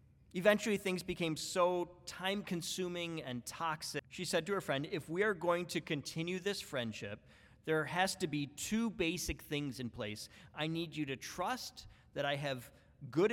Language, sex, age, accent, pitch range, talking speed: English, male, 40-59, American, 130-180 Hz, 170 wpm